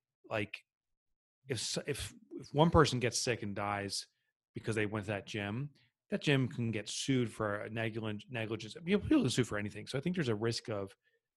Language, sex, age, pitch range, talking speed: English, male, 30-49, 110-135 Hz, 190 wpm